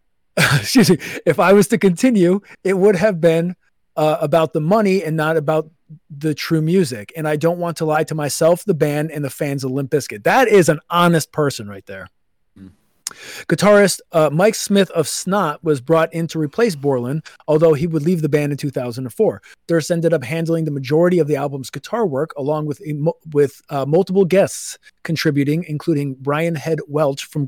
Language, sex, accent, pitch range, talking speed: English, male, American, 140-170 Hz, 190 wpm